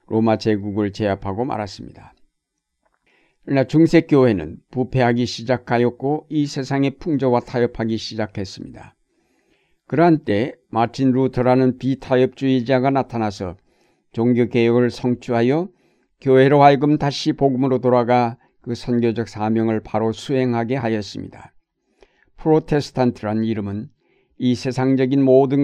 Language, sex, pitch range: Korean, male, 115-135 Hz